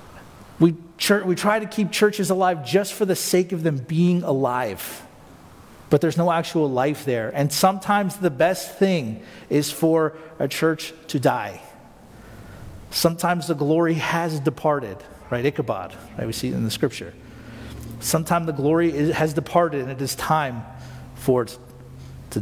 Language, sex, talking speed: English, male, 150 wpm